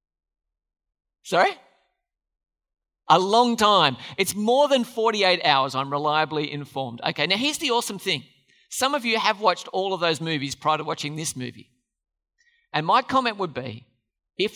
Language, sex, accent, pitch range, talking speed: English, male, Australian, 140-230 Hz, 155 wpm